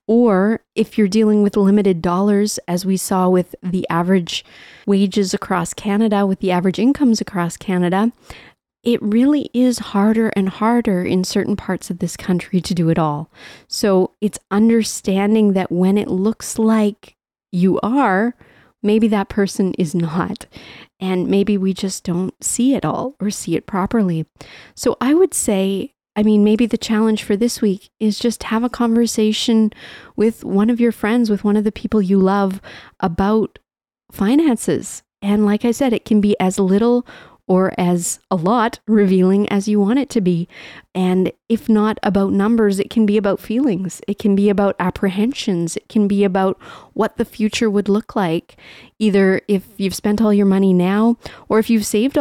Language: English